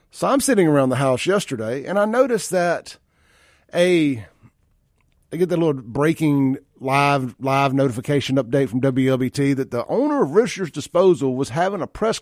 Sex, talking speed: male, 160 wpm